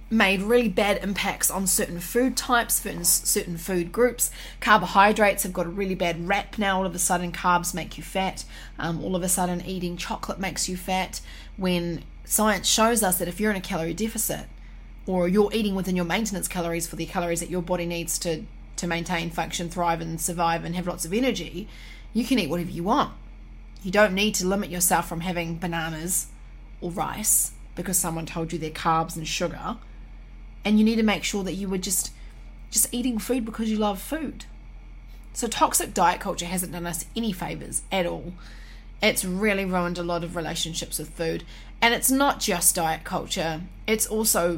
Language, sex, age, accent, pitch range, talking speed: English, female, 30-49, Australian, 170-200 Hz, 195 wpm